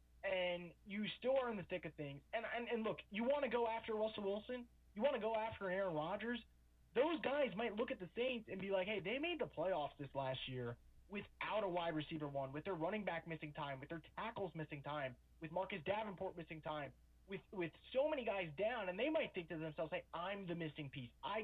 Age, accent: 30-49, American